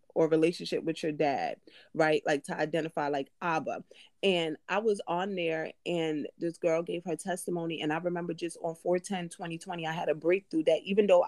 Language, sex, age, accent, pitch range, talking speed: English, female, 30-49, American, 155-175 Hz, 190 wpm